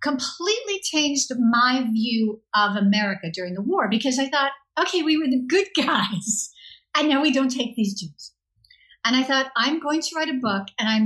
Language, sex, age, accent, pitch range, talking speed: English, female, 50-69, American, 195-275 Hz, 195 wpm